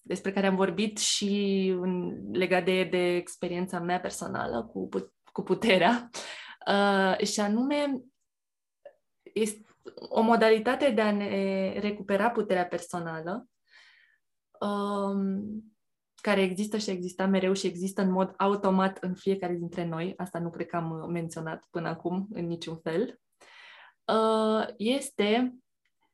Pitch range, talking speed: 185-225 Hz, 115 wpm